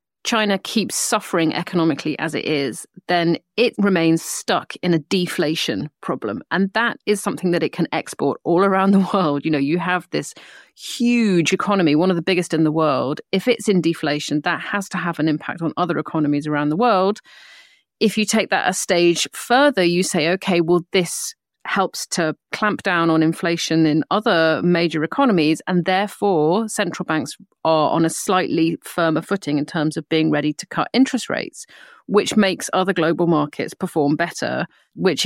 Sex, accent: female, British